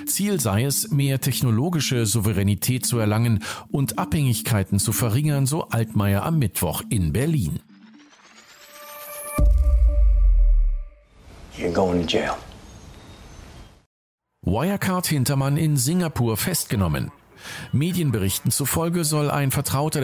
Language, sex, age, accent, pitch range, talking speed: German, male, 50-69, German, 105-140 Hz, 85 wpm